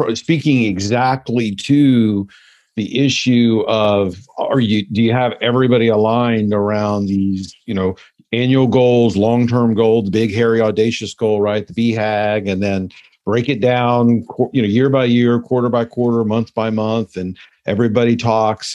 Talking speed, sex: 150 wpm, male